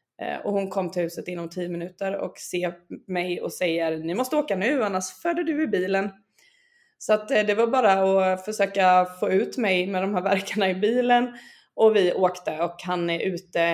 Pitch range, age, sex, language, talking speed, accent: 175-215 Hz, 20-39, female, Swedish, 195 wpm, native